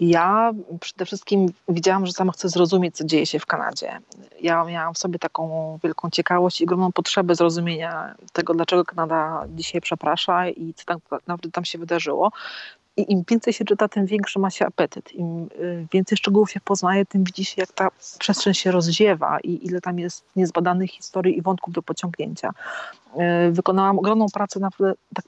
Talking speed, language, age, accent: 175 wpm, Polish, 30-49, native